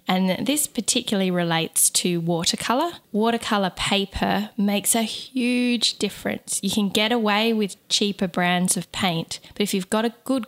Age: 10-29